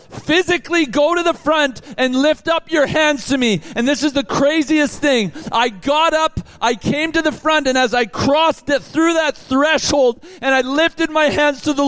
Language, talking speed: English, 205 wpm